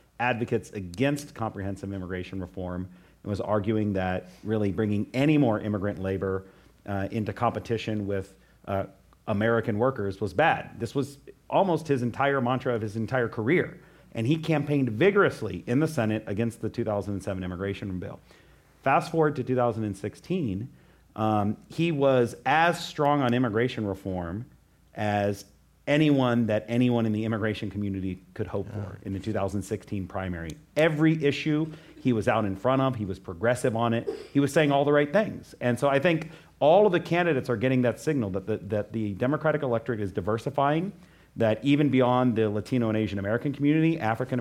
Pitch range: 105-135 Hz